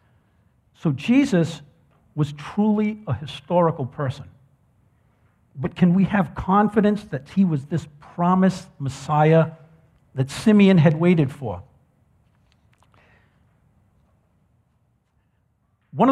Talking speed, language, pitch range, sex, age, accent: 90 wpm, English, 130-175 Hz, male, 60-79, American